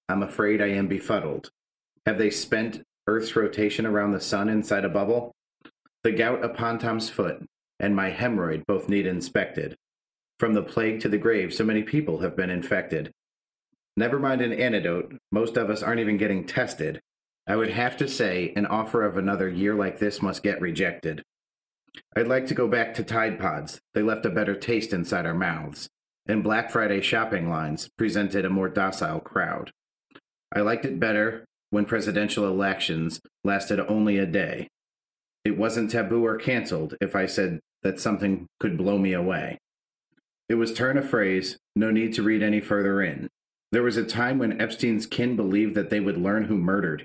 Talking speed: 180 wpm